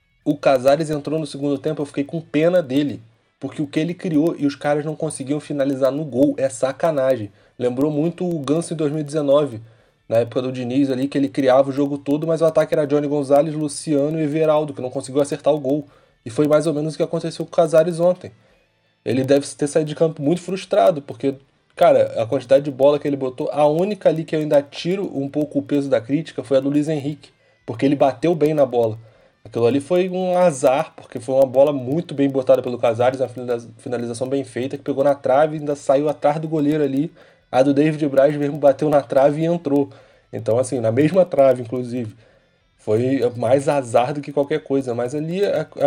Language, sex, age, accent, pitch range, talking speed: Portuguese, male, 20-39, Brazilian, 130-155 Hz, 215 wpm